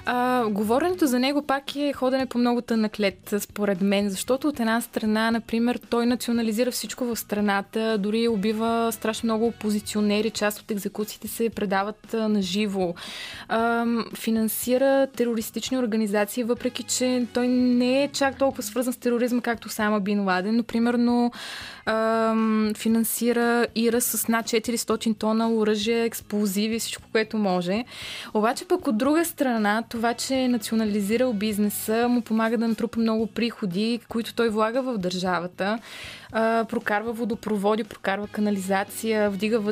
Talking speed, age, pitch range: 140 wpm, 20-39, 210-240 Hz